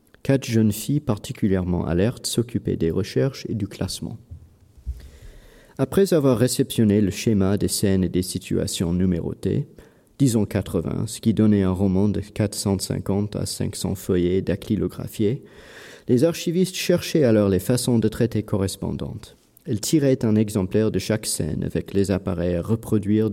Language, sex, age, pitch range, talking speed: French, male, 40-59, 95-125 Hz, 145 wpm